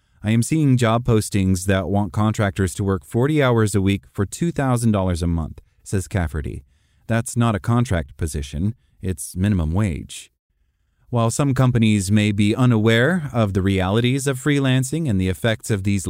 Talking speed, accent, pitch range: 165 wpm, American, 95-125 Hz